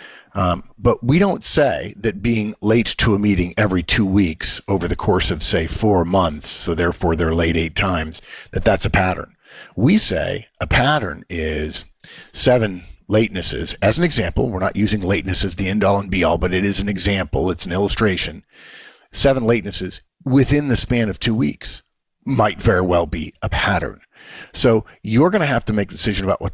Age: 50-69